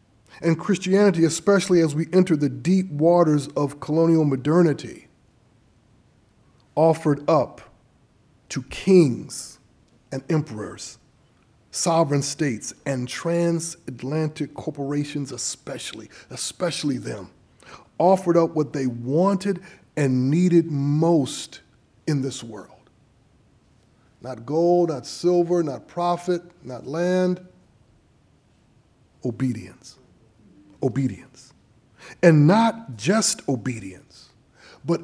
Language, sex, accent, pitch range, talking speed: English, male, American, 130-180 Hz, 90 wpm